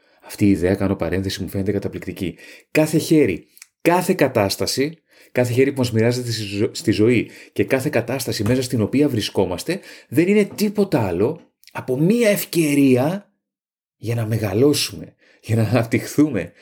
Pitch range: 105-140 Hz